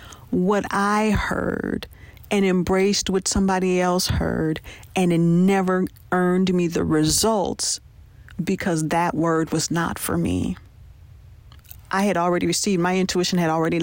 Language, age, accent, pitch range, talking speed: English, 40-59, American, 165-205 Hz, 135 wpm